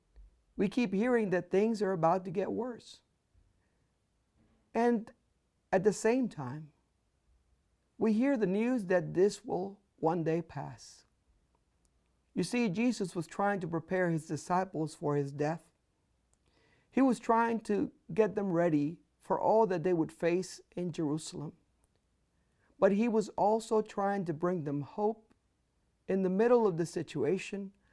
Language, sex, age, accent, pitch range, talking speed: English, male, 50-69, American, 145-200 Hz, 145 wpm